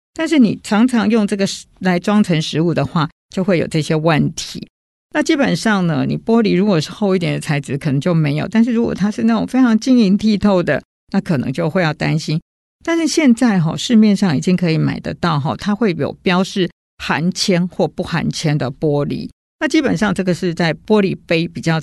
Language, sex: Chinese, female